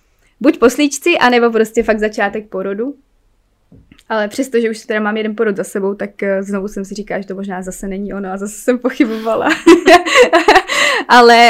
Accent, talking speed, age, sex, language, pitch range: native, 165 wpm, 20-39, female, Czech, 200-230 Hz